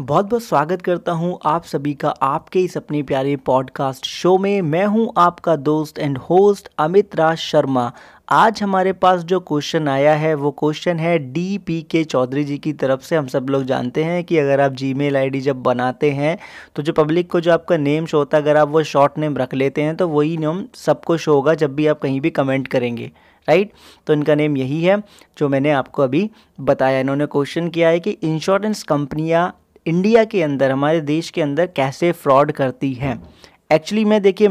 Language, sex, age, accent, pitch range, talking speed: Hindi, male, 30-49, native, 145-185 Hz, 200 wpm